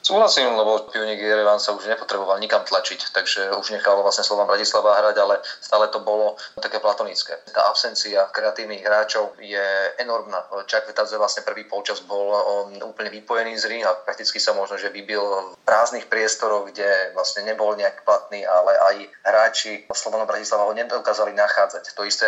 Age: 30-49